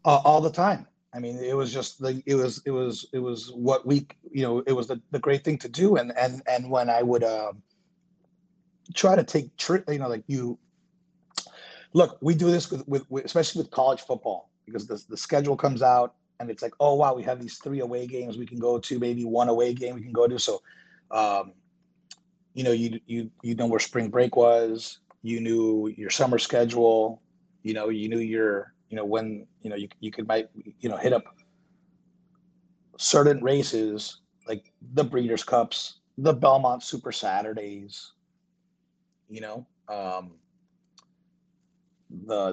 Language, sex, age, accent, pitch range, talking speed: English, male, 30-49, American, 115-180 Hz, 185 wpm